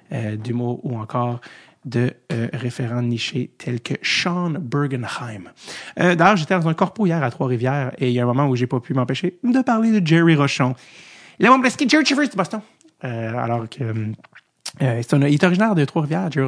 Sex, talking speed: male, 210 wpm